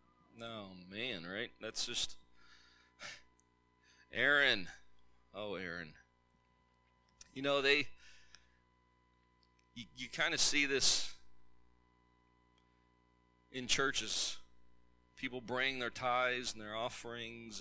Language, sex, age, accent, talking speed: English, male, 30-49, American, 90 wpm